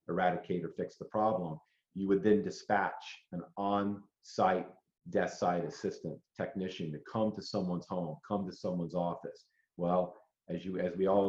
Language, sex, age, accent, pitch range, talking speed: English, male, 40-59, American, 90-105 Hz, 160 wpm